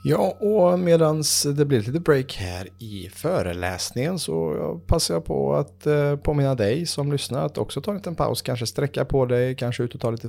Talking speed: 200 wpm